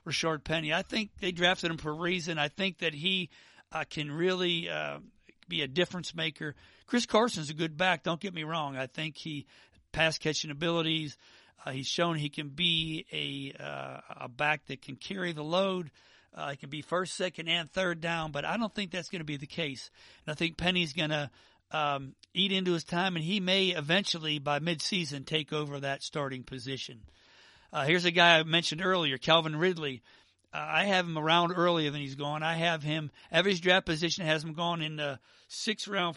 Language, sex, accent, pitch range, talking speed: English, male, American, 145-180 Hz, 205 wpm